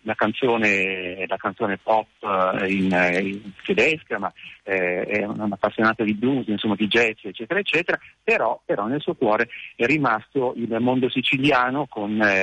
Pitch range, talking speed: 95-120 Hz, 150 wpm